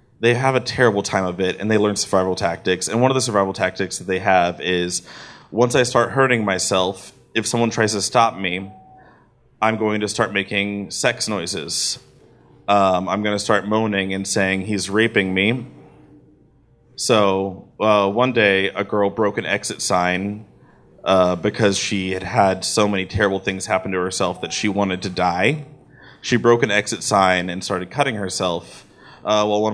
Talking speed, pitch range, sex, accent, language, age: 185 wpm, 95-115 Hz, male, American, English, 30-49